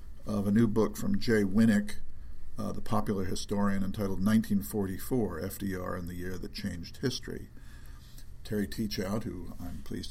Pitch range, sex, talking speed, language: 85-105 Hz, male, 150 wpm, English